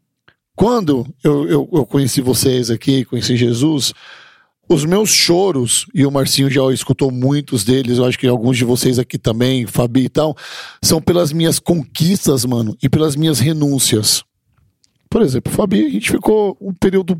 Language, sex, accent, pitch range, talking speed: Portuguese, male, Brazilian, 140-185 Hz, 165 wpm